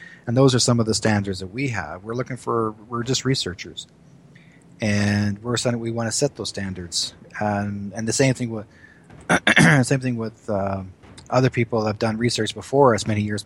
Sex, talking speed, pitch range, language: male, 195 wpm, 105-130 Hz, English